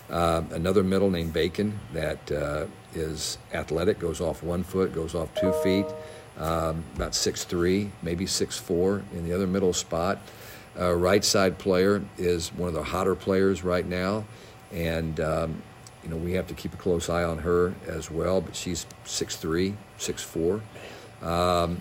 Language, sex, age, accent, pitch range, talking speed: English, male, 50-69, American, 80-95 Hz, 170 wpm